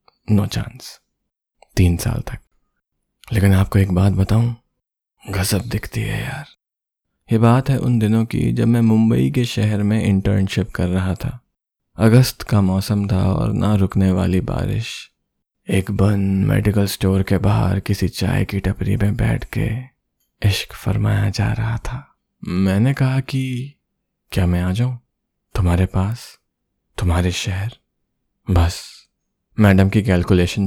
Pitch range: 95-115 Hz